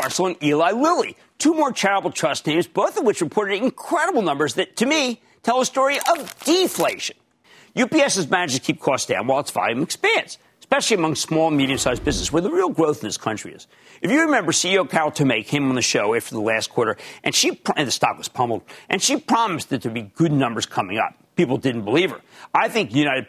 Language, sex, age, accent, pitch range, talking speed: English, male, 50-69, American, 140-230 Hz, 215 wpm